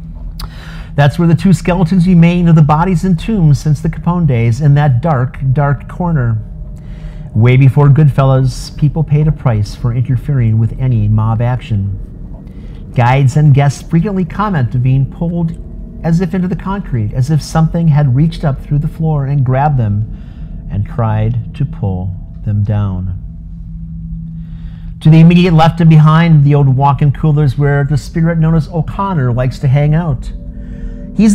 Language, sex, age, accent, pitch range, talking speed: English, male, 50-69, American, 115-155 Hz, 165 wpm